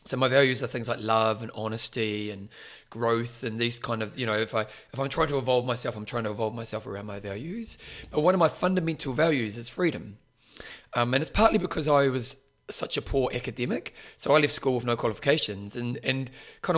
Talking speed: 230 wpm